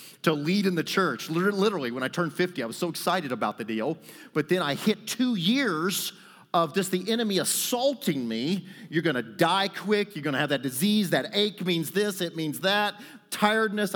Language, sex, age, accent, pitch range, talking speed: English, male, 40-59, American, 165-230 Hz, 200 wpm